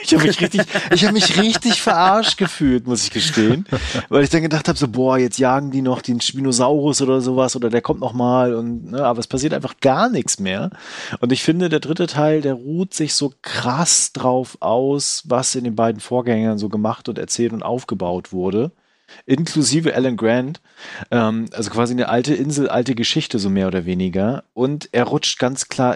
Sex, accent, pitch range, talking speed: male, German, 110-145 Hz, 190 wpm